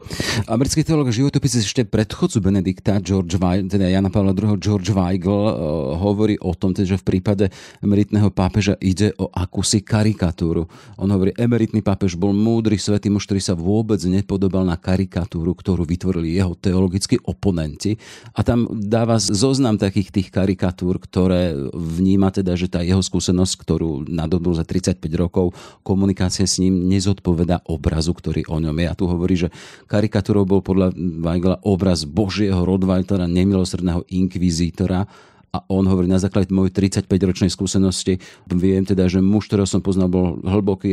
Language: Slovak